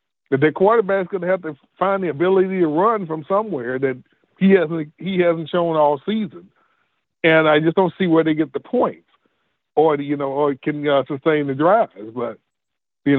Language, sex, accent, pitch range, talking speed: English, male, American, 140-180 Hz, 205 wpm